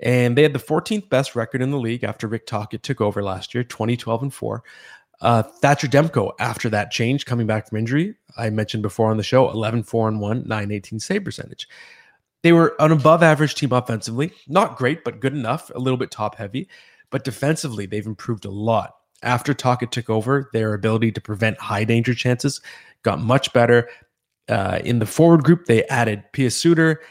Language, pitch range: English, 110-140 Hz